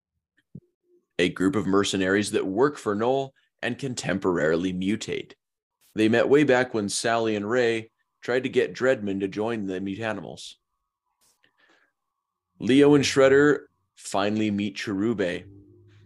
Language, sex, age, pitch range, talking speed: English, male, 30-49, 100-125 Hz, 125 wpm